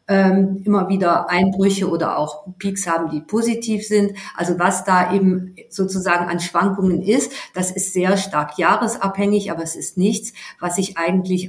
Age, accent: 50-69, German